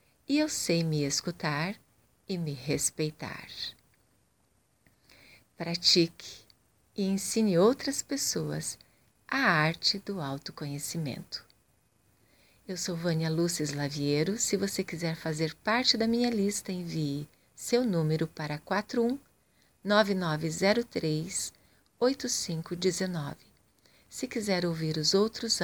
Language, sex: Portuguese, female